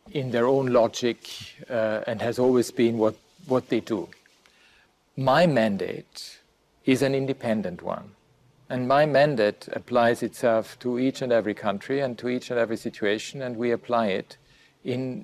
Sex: male